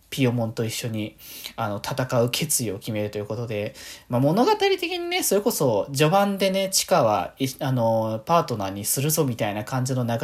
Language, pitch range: Japanese, 115-160 Hz